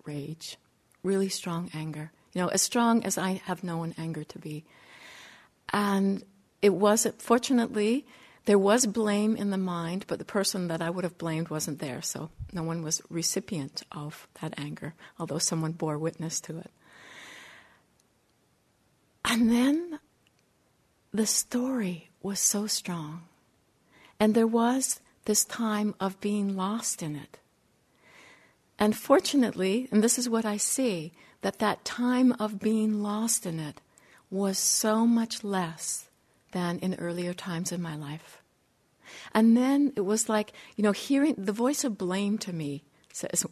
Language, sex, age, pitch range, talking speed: English, female, 60-79, 165-220 Hz, 150 wpm